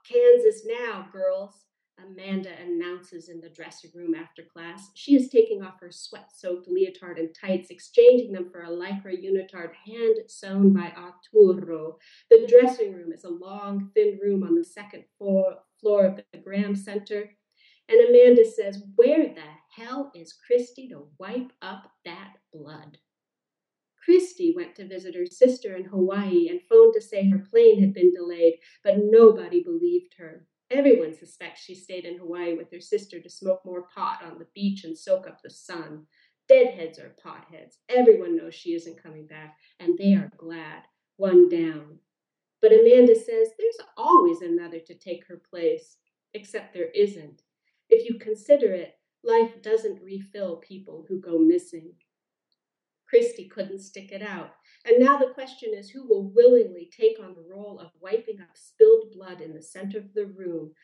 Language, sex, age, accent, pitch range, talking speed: English, female, 40-59, American, 175-250 Hz, 165 wpm